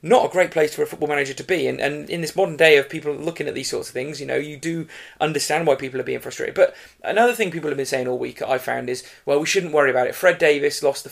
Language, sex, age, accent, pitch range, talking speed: English, male, 30-49, British, 135-195 Hz, 300 wpm